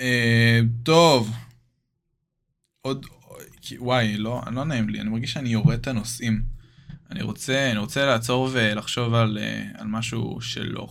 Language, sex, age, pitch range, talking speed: Hebrew, male, 20-39, 115-135 Hz, 130 wpm